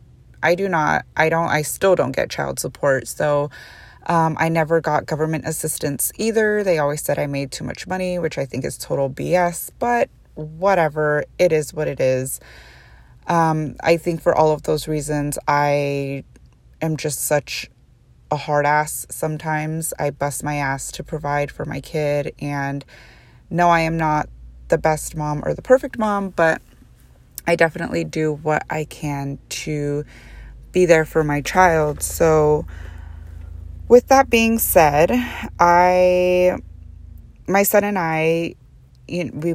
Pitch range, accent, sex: 145-175 Hz, American, female